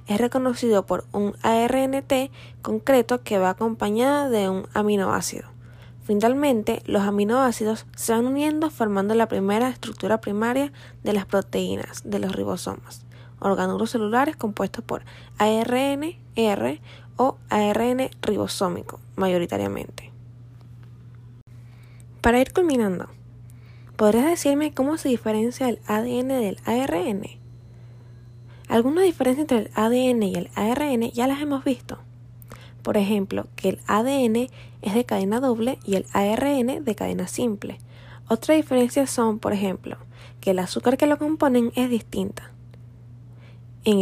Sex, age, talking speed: female, 10-29, 125 wpm